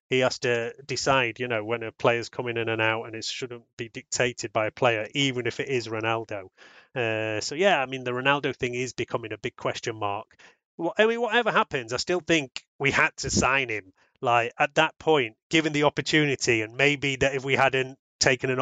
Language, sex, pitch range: English, male, 115-140 Hz